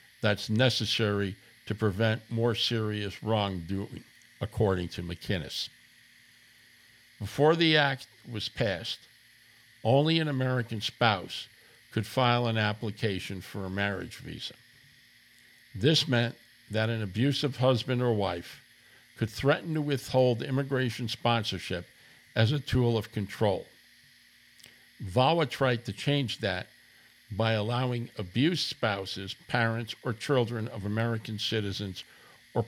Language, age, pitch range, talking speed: English, 60-79, 105-130 Hz, 115 wpm